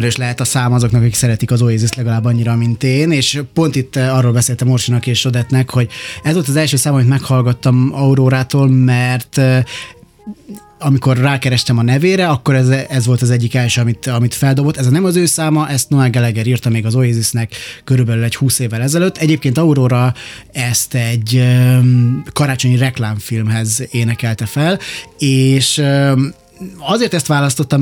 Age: 20-39